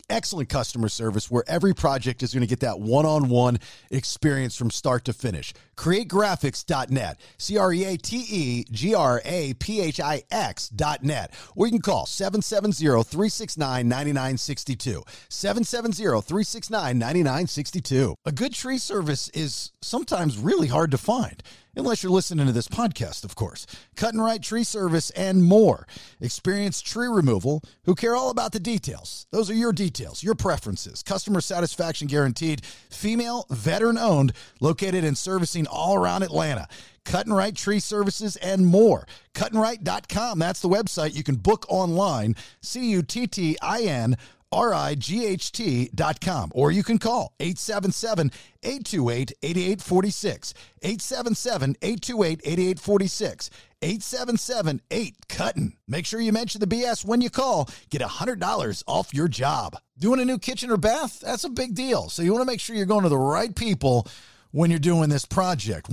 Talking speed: 135 wpm